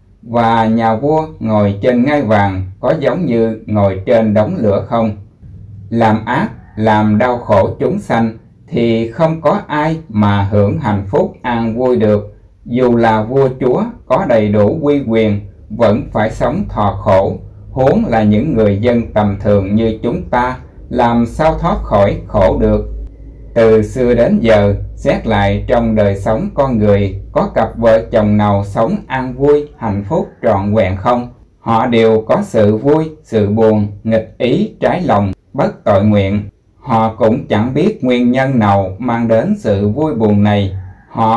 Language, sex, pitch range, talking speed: Vietnamese, male, 100-120 Hz, 165 wpm